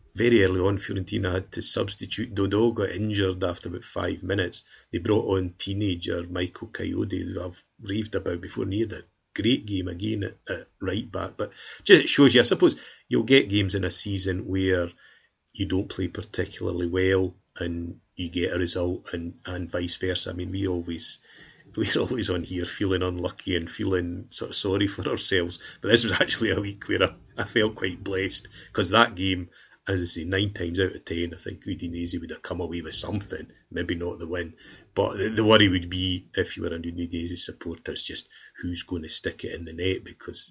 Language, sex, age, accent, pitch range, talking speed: English, male, 30-49, British, 90-100 Hz, 205 wpm